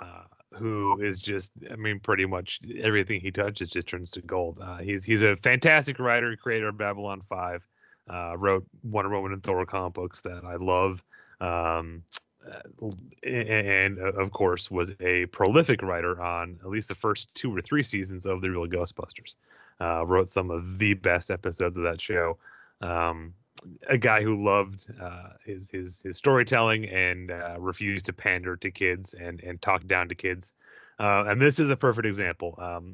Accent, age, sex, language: American, 30-49, male, English